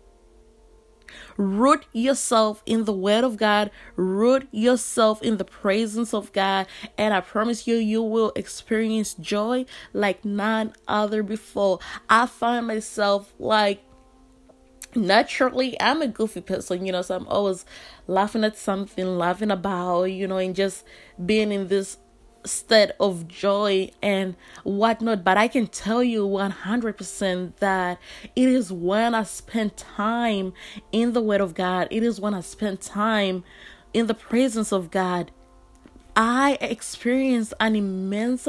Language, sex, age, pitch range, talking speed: English, female, 20-39, 190-225 Hz, 140 wpm